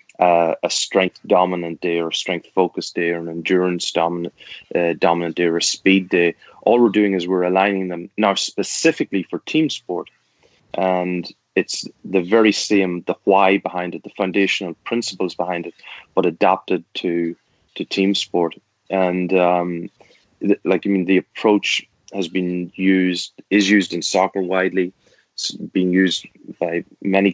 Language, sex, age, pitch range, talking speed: English, male, 20-39, 90-100 Hz, 155 wpm